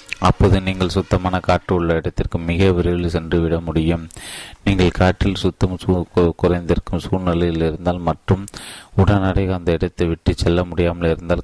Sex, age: male, 30-49